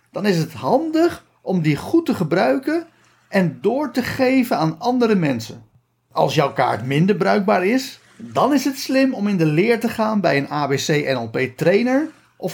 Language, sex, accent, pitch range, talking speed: Dutch, male, Dutch, 160-235 Hz, 175 wpm